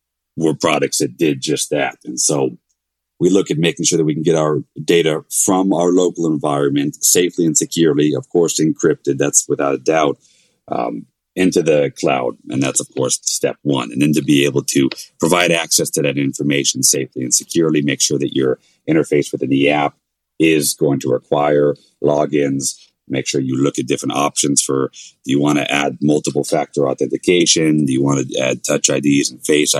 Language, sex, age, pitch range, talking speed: English, male, 30-49, 65-75 Hz, 190 wpm